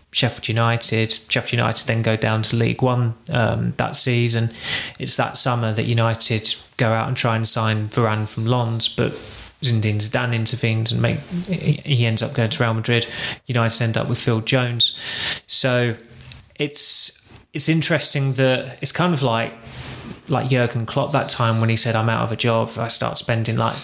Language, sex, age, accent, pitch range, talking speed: English, male, 20-39, British, 115-125 Hz, 180 wpm